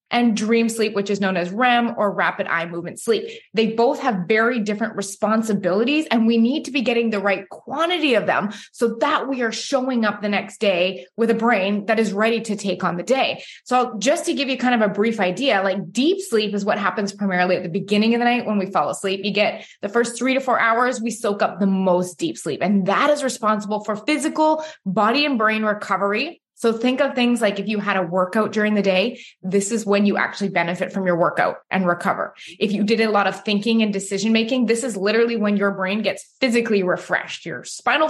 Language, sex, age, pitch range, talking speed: English, female, 20-39, 200-250 Hz, 230 wpm